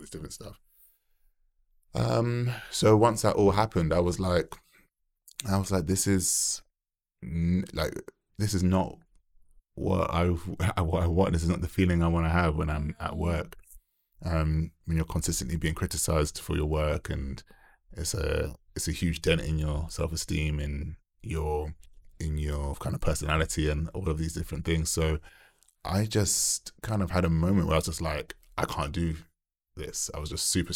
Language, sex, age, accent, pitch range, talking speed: English, male, 20-39, British, 75-90 Hz, 180 wpm